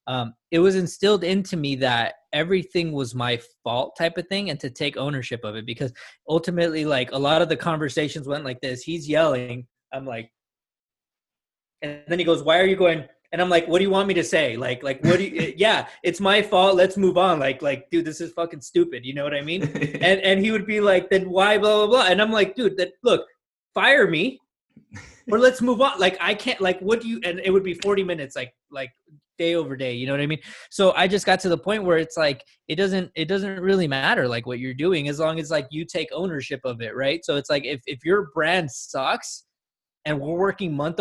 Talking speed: 240 wpm